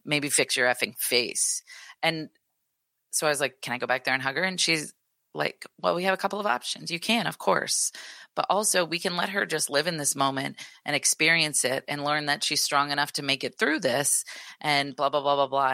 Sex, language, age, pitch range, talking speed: female, English, 30-49, 130-165 Hz, 240 wpm